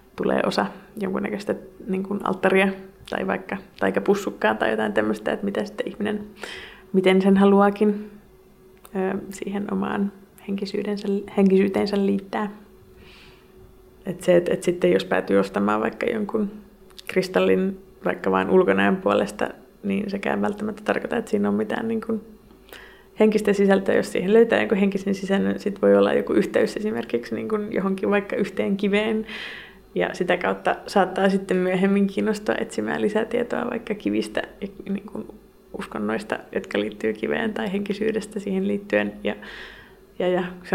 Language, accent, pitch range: Finnish, native, 185-210 Hz